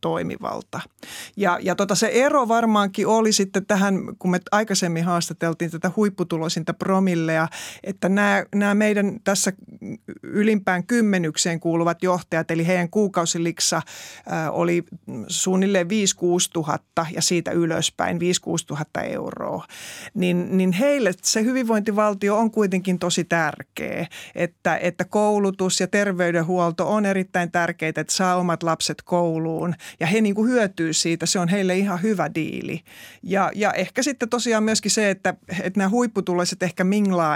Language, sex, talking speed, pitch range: Finnish, male, 135 wpm, 170-200 Hz